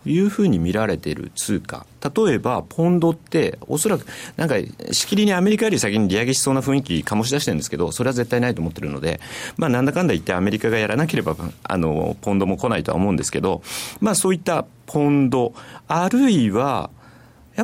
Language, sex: Japanese, male